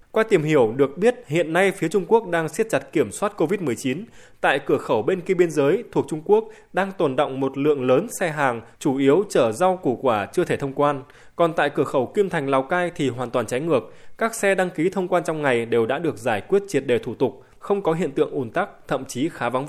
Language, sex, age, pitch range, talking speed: Vietnamese, male, 20-39, 140-185 Hz, 255 wpm